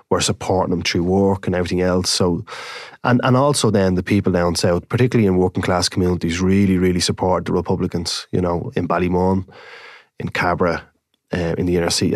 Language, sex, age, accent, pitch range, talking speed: English, male, 20-39, Irish, 90-100 Hz, 190 wpm